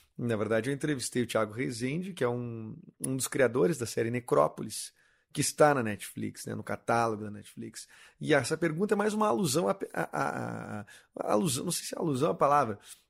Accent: Brazilian